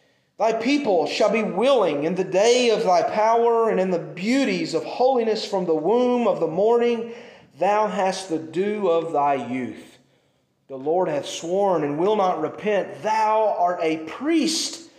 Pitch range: 160-220 Hz